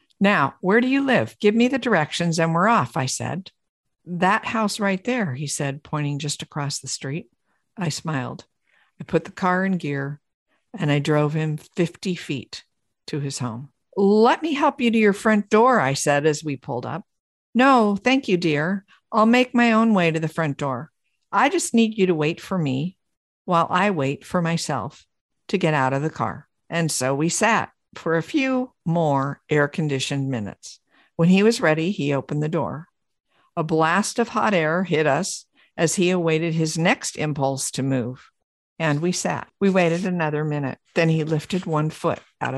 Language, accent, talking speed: English, American, 190 wpm